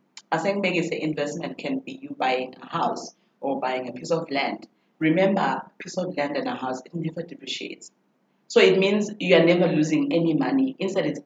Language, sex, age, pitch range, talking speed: English, female, 30-49, 145-195 Hz, 205 wpm